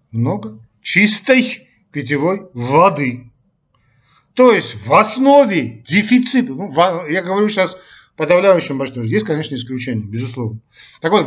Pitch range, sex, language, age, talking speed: 135-220 Hz, male, Russian, 40-59, 110 wpm